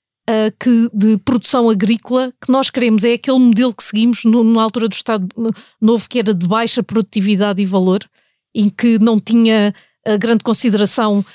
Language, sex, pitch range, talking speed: Portuguese, female, 210-245 Hz, 165 wpm